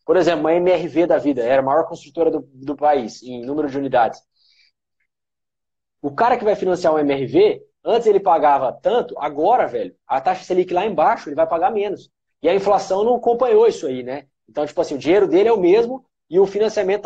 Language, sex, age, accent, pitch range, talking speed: Portuguese, male, 20-39, Brazilian, 155-235 Hz, 210 wpm